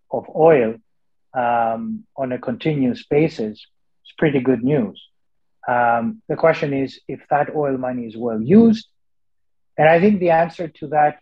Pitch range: 125-165 Hz